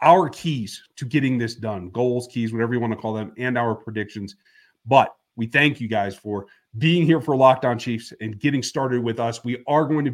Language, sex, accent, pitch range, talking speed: English, male, American, 115-150 Hz, 220 wpm